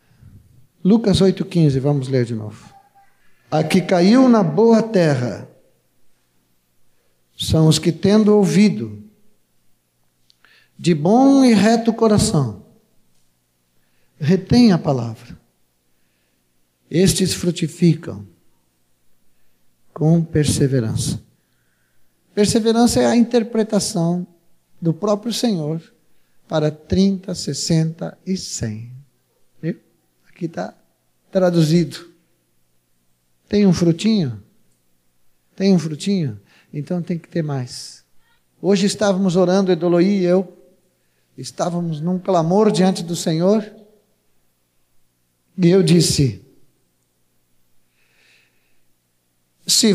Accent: Brazilian